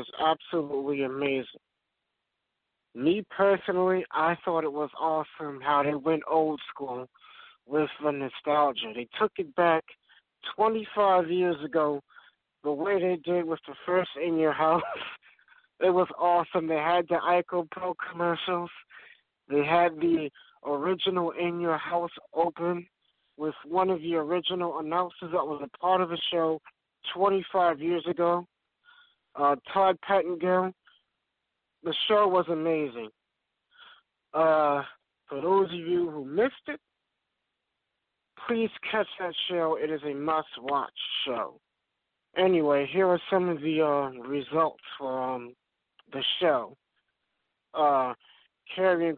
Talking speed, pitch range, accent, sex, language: 130 wpm, 150-180 Hz, American, male, English